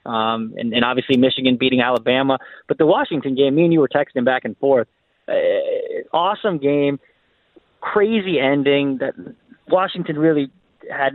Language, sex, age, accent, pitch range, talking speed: English, male, 20-39, American, 115-140 Hz, 150 wpm